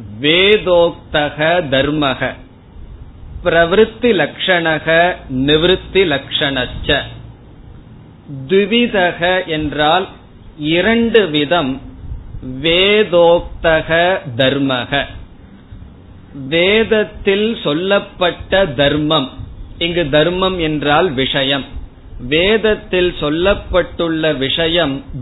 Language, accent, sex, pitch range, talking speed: Tamil, native, male, 135-185 Hz, 45 wpm